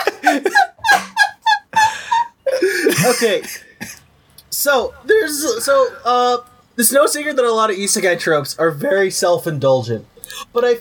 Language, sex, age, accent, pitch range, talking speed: English, male, 20-39, American, 180-255 Hz, 105 wpm